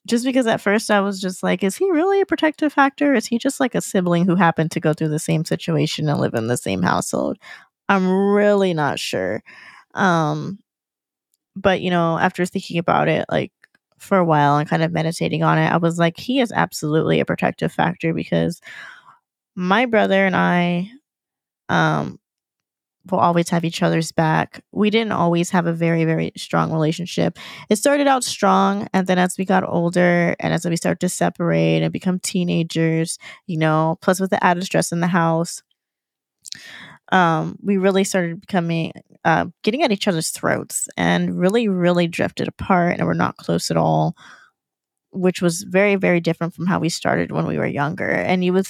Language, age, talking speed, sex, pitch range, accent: English, 20-39, 190 wpm, female, 160-195 Hz, American